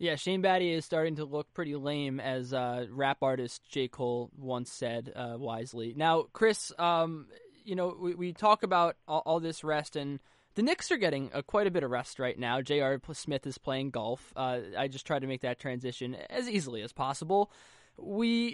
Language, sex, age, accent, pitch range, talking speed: English, male, 10-29, American, 135-195 Hz, 205 wpm